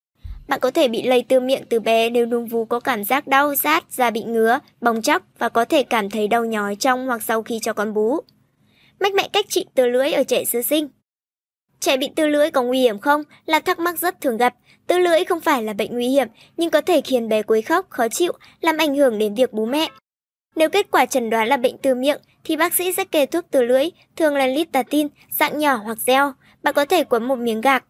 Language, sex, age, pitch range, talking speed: Vietnamese, male, 20-39, 240-310 Hz, 245 wpm